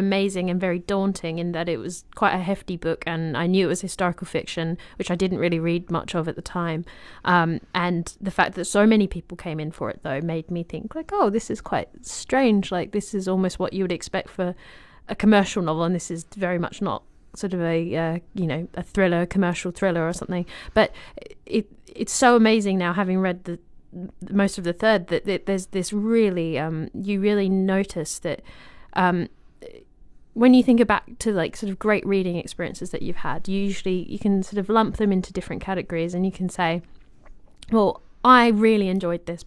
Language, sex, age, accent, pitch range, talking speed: English, female, 30-49, British, 170-200 Hz, 210 wpm